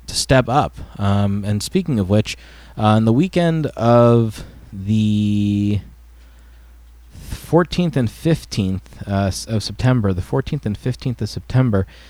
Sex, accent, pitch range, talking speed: male, American, 90-110 Hz, 125 wpm